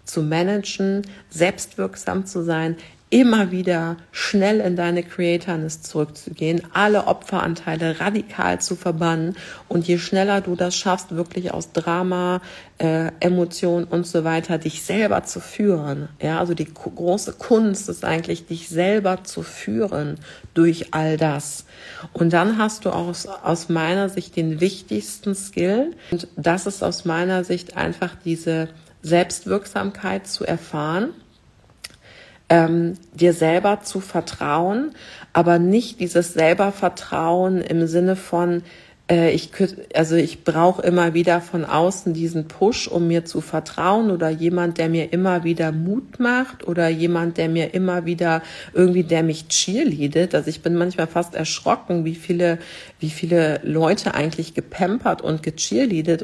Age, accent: 50-69, German